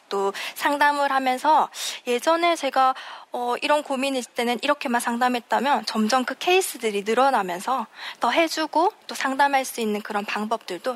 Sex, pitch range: female, 225-320 Hz